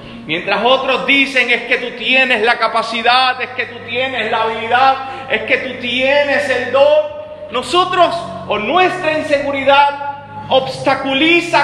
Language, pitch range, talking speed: Spanish, 210-260 Hz, 135 wpm